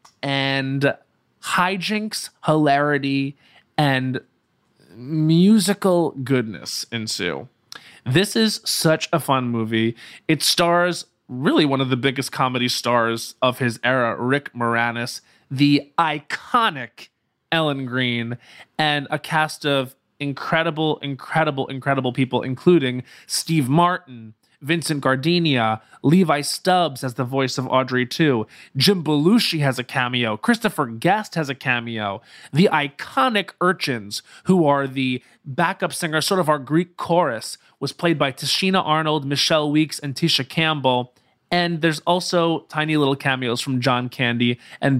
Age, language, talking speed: 20-39, English, 125 wpm